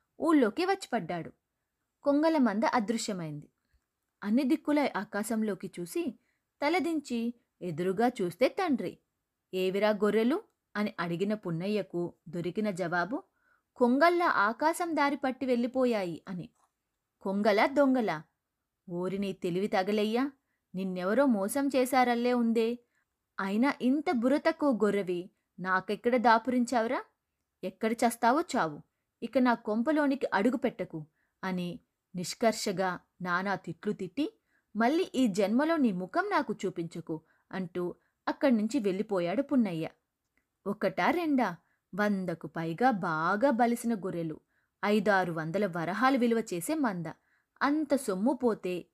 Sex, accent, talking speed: female, native, 100 wpm